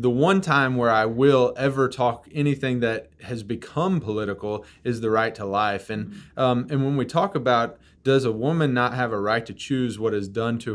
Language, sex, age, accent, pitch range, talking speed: English, male, 30-49, American, 105-135 Hz, 210 wpm